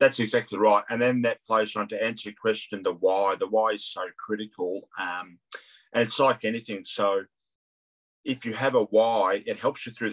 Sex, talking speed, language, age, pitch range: male, 200 wpm, English, 30-49, 100-115 Hz